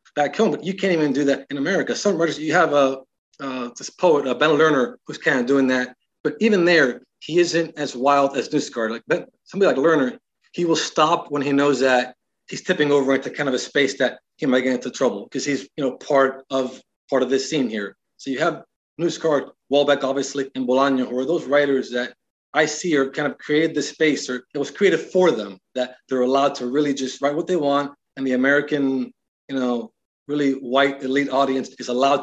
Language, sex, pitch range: English, male, 130-145 Hz